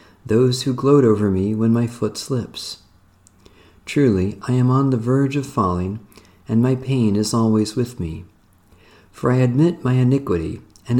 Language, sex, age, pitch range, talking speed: English, male, 50-69, 95-125 Hz, 165 wpm